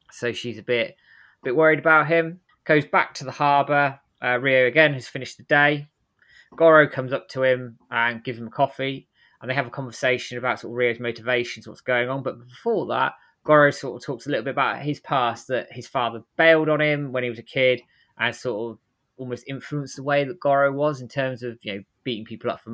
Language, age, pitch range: English, 20-39, 120-145 Hz